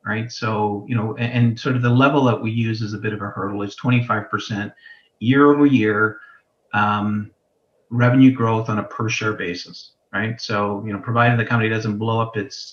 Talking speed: 210 wpm